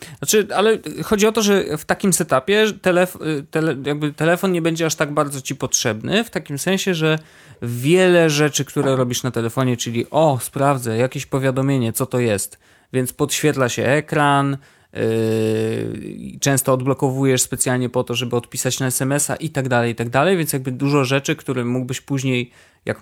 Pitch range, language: 115-145 Hz, Polish